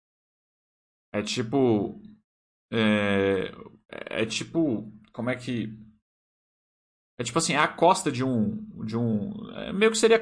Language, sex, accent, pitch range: Portuguese, male, Brazilian, 105-160 Hz